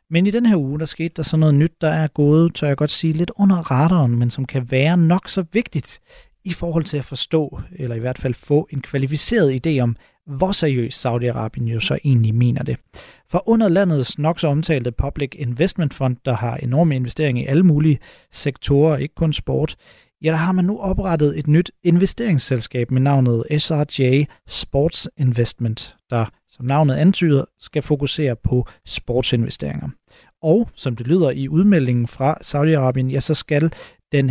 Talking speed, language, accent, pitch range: 180 wpm, Danish, native, 125-160 Hz